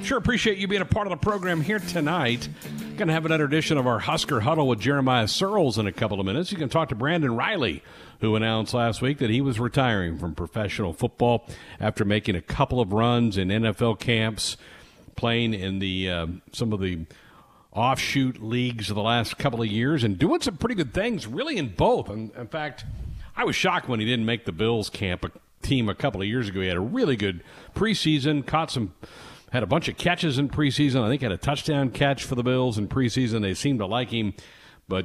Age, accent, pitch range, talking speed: 50-69, American, 95-135 Hz, 225 wpm